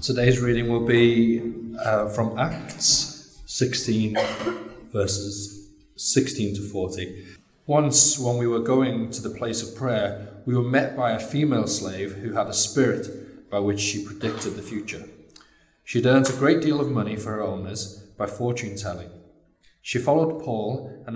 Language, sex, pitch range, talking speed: English, male, 100-130 Hz, 160 wpm